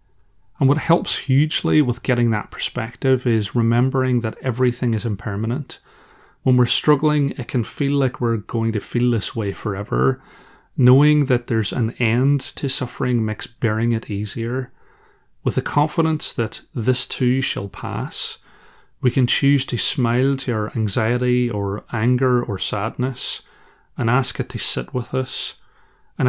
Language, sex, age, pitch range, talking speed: English, male, 30-49, 110-130 Hz, 155 wpm